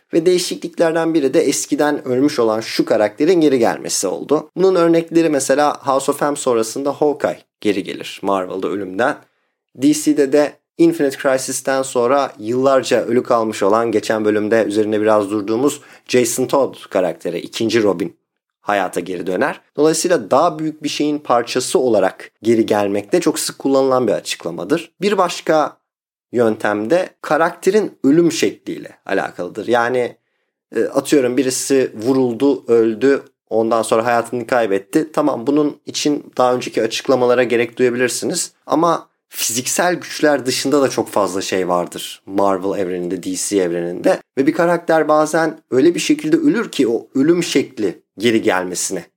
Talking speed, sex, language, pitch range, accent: 135 wpm, male, Turkish, 115-170 Hz, native